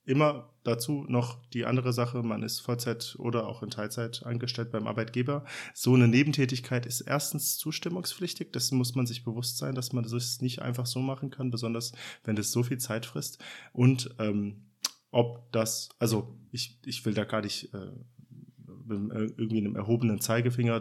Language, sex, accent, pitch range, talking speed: German, male, German, 105-125 Hz, 175 wpm